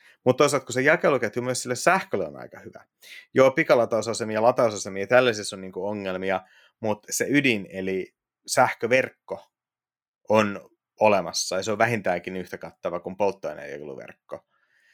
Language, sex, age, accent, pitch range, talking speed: Finnish, male, 30-49, native, 95-115 Hz, 130 wpm